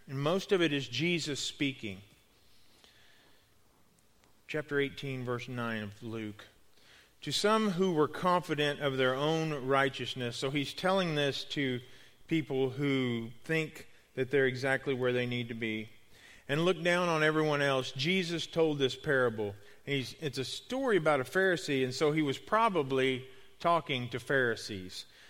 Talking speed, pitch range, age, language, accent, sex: 145 wpm, 115-150 Hz, 40-59, English, American, male